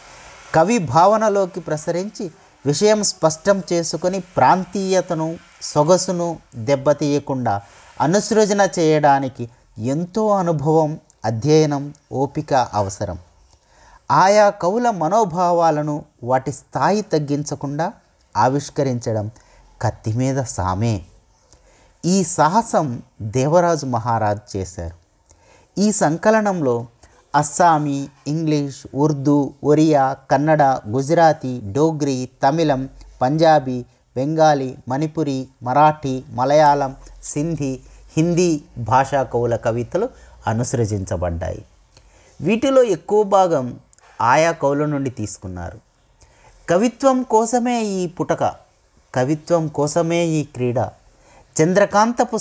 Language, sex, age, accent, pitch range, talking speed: Telugu, male, 30-49, native, 125-170 Hz, 75 wpm